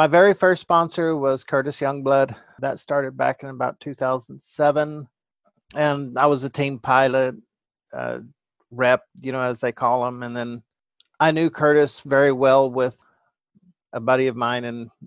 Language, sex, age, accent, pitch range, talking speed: English, male, 50-69, American, 120-140 Hz, 165 wpm